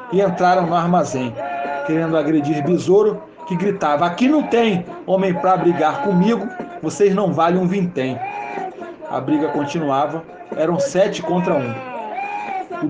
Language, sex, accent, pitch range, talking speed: Portuguese, male, Brazilian, 170-225 Hz, 135 wpm